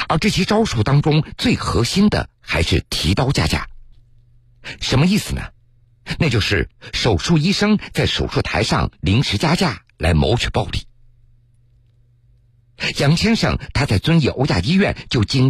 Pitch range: 115-150 Hz